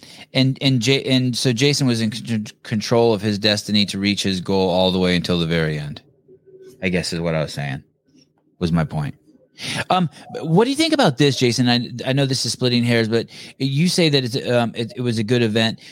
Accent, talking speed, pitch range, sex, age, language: American, 230 wpm, 100-130 Hz, male, 30-49, English